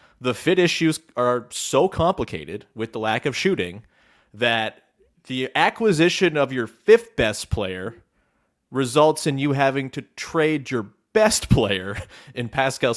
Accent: American